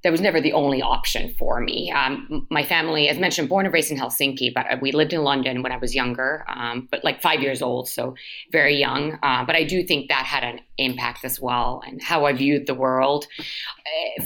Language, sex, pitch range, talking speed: English, female, 135-170 Hz, 225 wpm